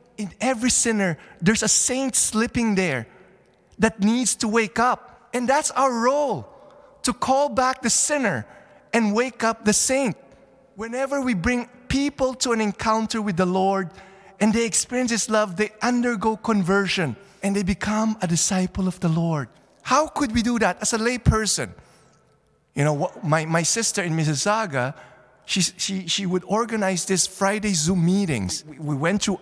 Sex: male